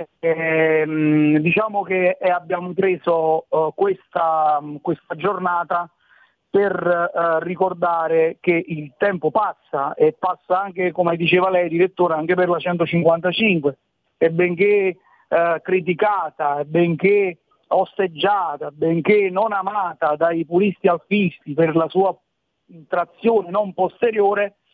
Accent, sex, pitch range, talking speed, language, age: native, male, 165-185 Hz, 110 wpm, Italian, 40-59